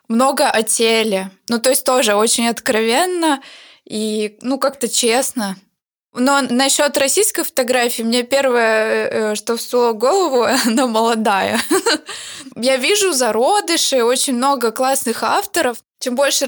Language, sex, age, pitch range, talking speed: Russian, female, 20-39, 230-275 Hz, 120 wpm